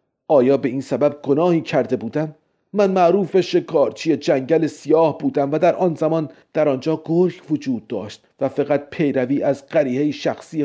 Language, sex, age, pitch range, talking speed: Persian, male, 40-59, 135-170 Hz, 160 wpm